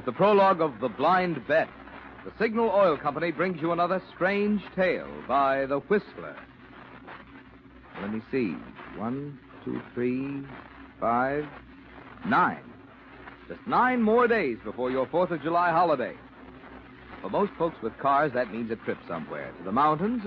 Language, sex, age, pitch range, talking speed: English, male, 60-79, 140-200 Hz, 150 wpm